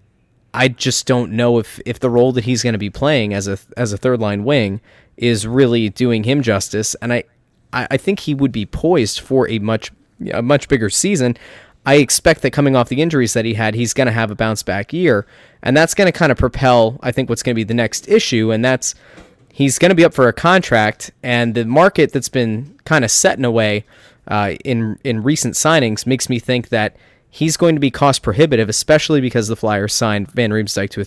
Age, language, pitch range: 20-39, English, 110-135 Hz